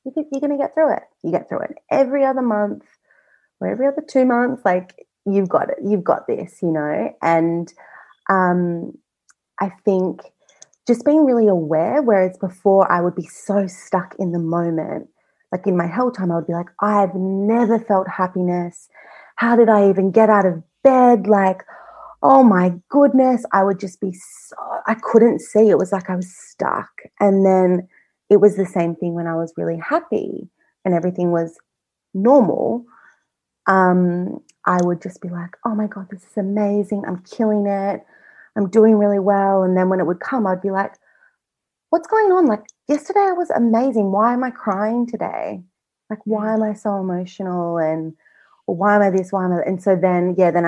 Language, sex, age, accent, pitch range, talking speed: English, female, 30-49, Australian, 180-225 Hz, 190 wpm